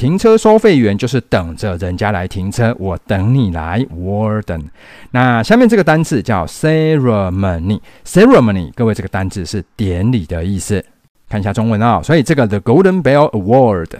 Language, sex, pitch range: Chinese, male, 95-140 Hz